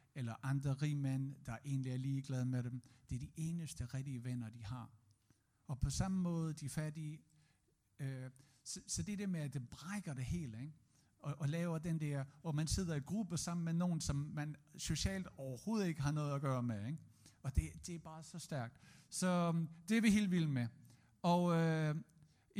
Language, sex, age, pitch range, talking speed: Danish, male, 60-79, 140-175 Hz, 205 wpm